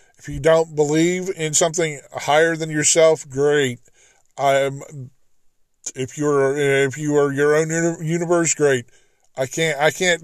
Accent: American